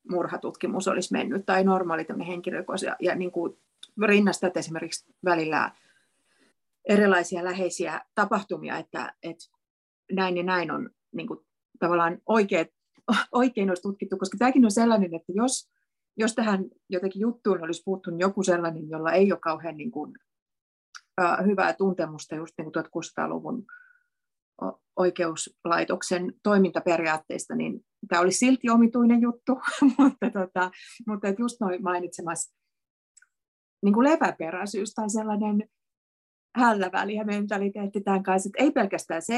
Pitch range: 170-215 Hz